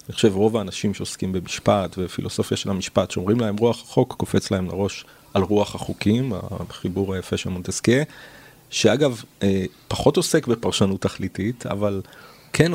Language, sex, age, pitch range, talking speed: Hebrew, male, 40-59, 95-130 Hz, 140 wpm